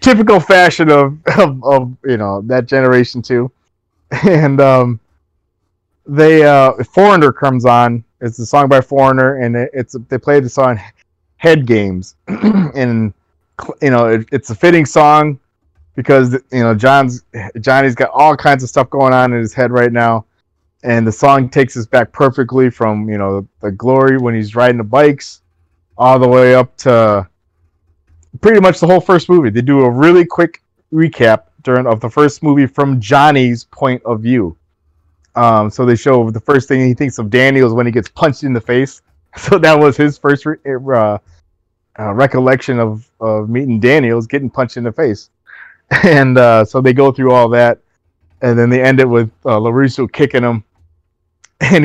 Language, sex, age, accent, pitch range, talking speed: English, male, 20-39, American, 115-140 Hz, 180 wpm